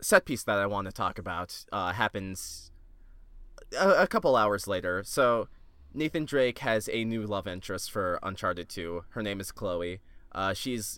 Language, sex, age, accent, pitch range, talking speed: English, male, 20-39, American, 95-120 Hz, 175 wpm